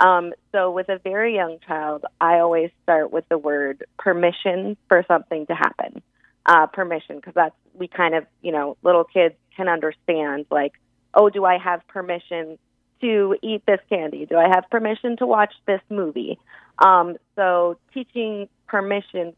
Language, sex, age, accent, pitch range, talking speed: English, female, 30-49, American, 160-195 Hz, 165 wpm